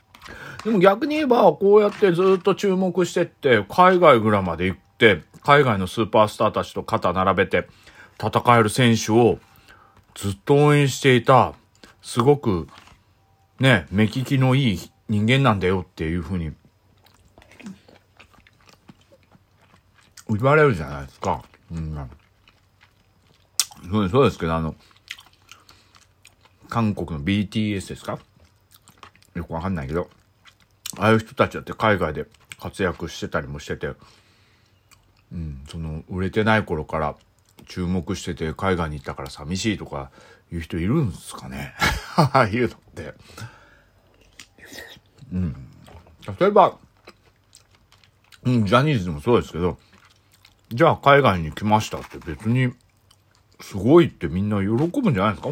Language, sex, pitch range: Japanese, male, 90-120 Hz